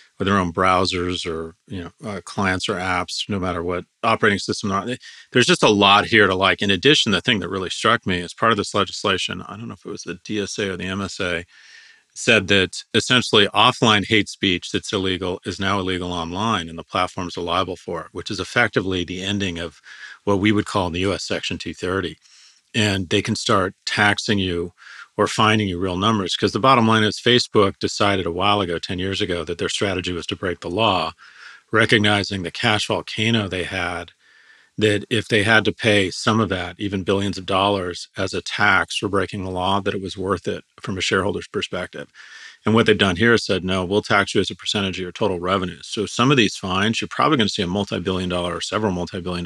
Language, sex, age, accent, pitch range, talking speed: English, male, 40-59, American, 90-110 Hz, 220 wpm